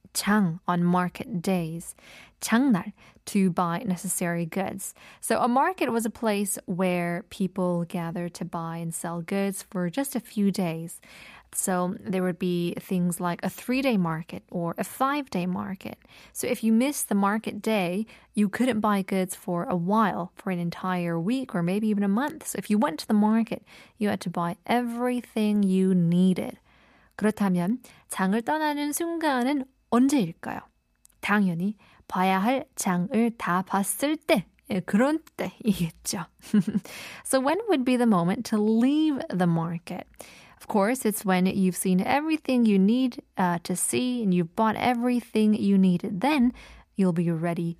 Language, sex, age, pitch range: Korean, female, 20-39, 180-235 Hz